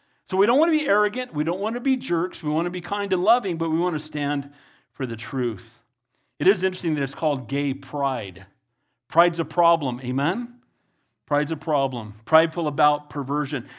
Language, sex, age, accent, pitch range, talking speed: English, male, 40-59, American, 155-230 Hz, 200 wpm